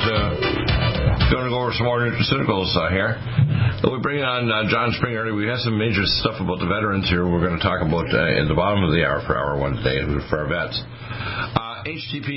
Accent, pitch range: American, 95-120 Hz